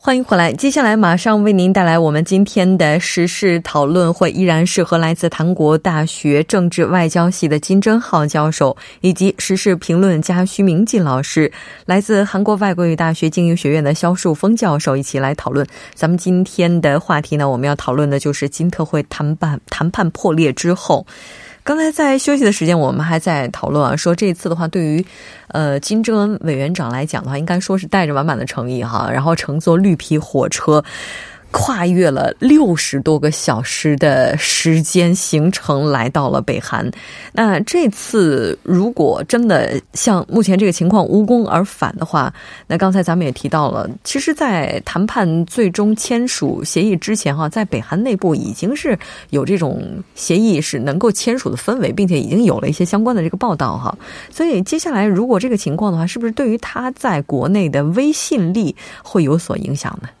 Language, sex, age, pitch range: Korean, female, 20-39, 155-200 Hz